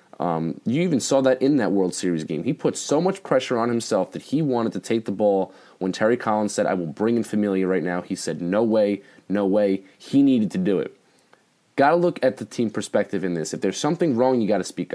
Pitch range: 95-125 Hz